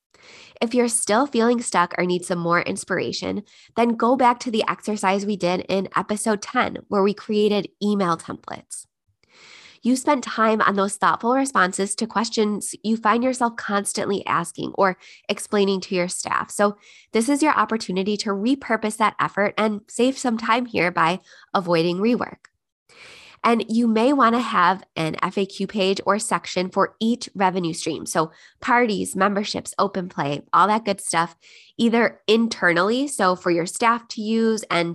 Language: English